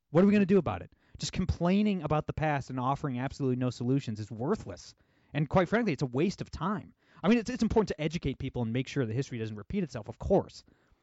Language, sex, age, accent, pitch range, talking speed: English, male, 30-49, American, 130-175 Hz, 250 wpm